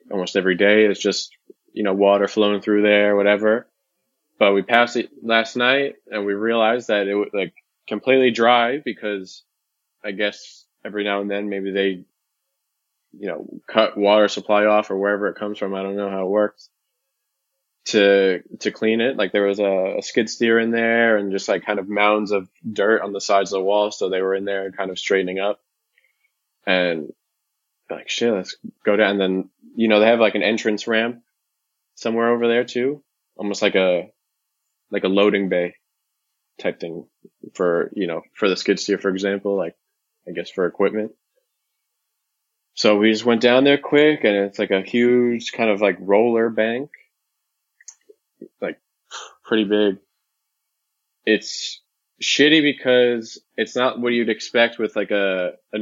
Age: 20-39